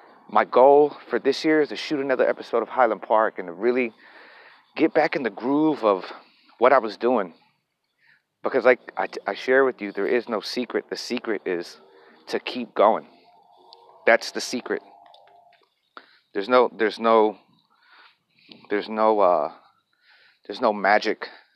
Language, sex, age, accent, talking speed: English, male, 30-49, American, 160 wpm